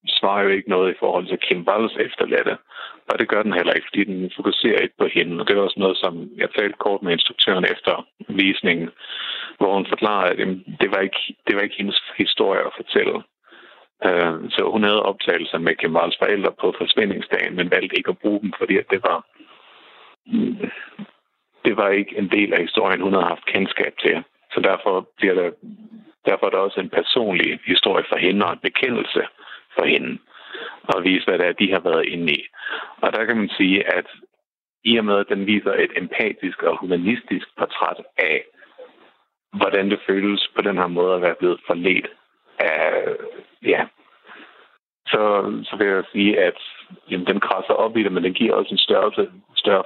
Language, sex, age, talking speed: Danish, male, 60-79, 190 wpm